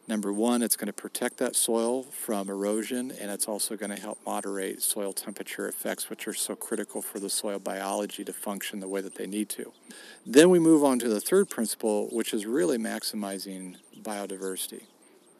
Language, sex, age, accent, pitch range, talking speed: English, male, 50-69, American, 100-115 Hz, 185 wpm